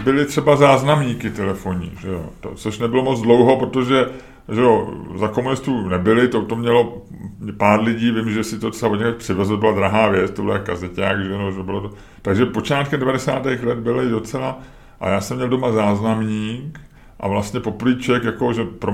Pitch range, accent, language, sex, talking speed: 100-130 Hz, native, Czech, male, 155 wpm